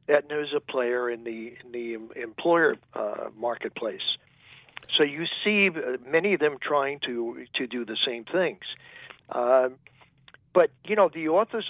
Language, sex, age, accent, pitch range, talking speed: English, male, 60-79, American, 130-170 Hz, 155 wpm